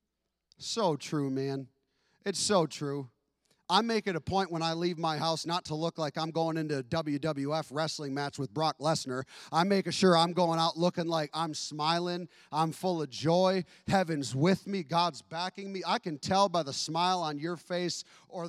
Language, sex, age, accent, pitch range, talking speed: English, male, 40-59, American, 155-195 Hz, 195 wpm